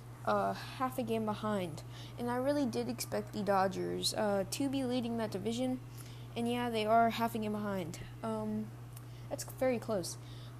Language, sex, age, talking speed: English, female, 20-39, 170 wpm